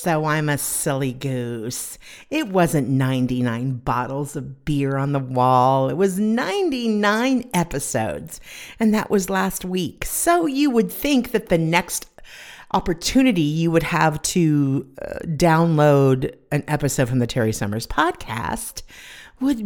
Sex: female